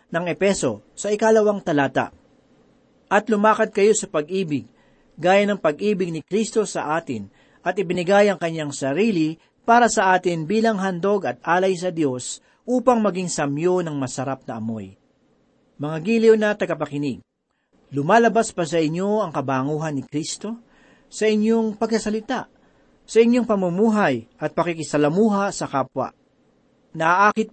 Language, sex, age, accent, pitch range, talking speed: Filipino, male, 40-59, native, 155-210 Hz, 135 wpm